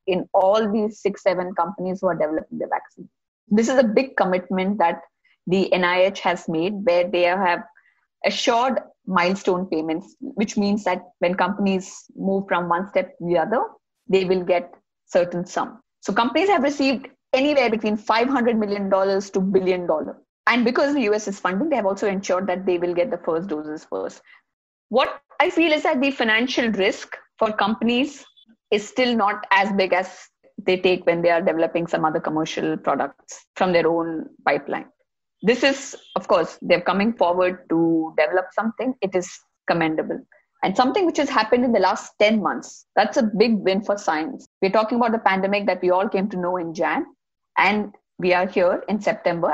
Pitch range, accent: 180-235 Hz, Indian